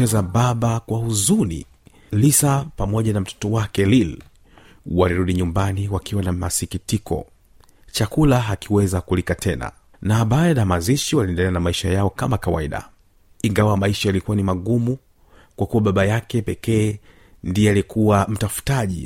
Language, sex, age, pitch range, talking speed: Swahili, male, 40-59, 95-115 Hz, 130 wpm